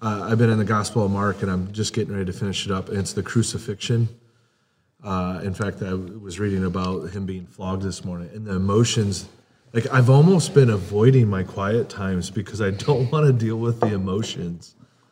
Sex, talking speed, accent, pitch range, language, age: male, 210 wpm, American, 100-125 Hz, English, 30-49